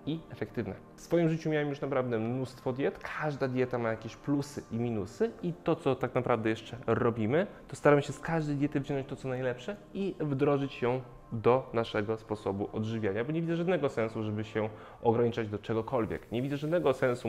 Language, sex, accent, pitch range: Polish, male, native, 115-140 Hz